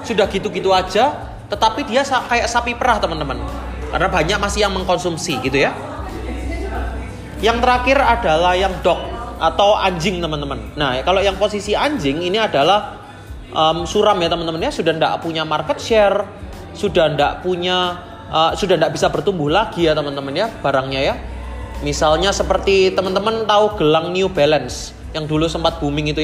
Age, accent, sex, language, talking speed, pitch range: 30-49, native, male, Indonesian, 150 wpm, 150-205 Hz